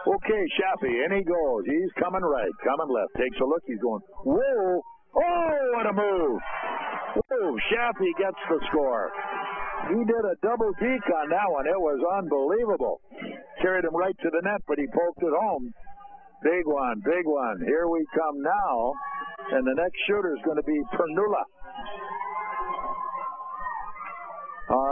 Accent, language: American, English